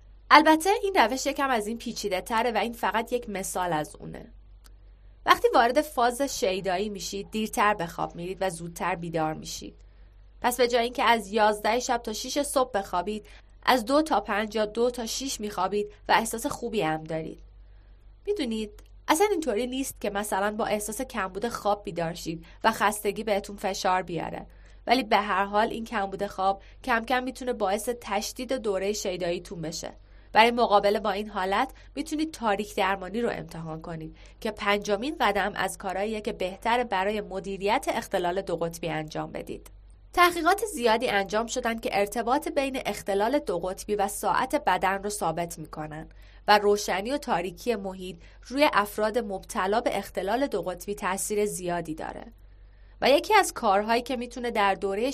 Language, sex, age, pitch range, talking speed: Persian, female, 20-39, 185-240 Hz, 165 wpm